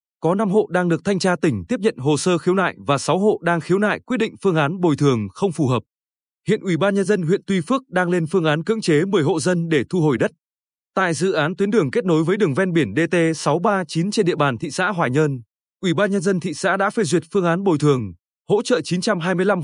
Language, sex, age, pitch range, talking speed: Vietnamese, male, 20-39, 150-200 Hz, 260 wpm